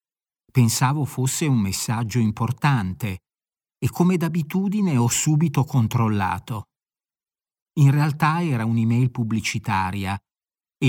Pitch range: 120-150 Hz